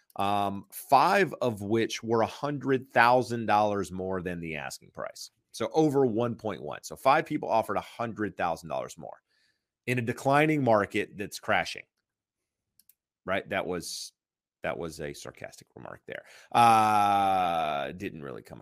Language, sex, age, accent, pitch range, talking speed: English, male, 30-49, American, 95-125 Hz, 125 wpm